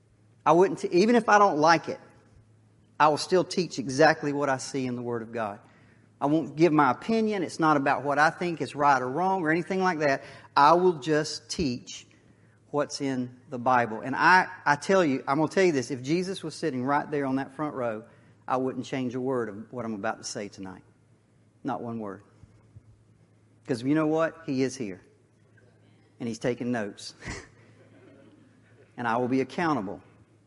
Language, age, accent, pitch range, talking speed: English, 40-59, American, 115-175 Hz, 195 wpm